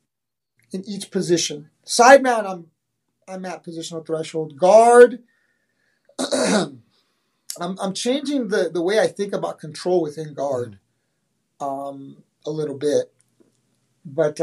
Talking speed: 110 wpm